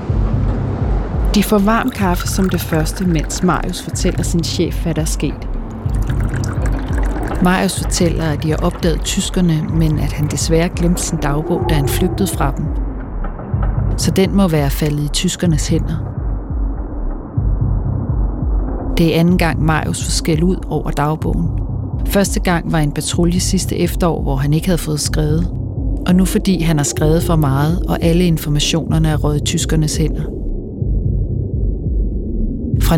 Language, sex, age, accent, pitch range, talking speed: Danish, female, 40-59, native, 115-170 Hz, 150 wpm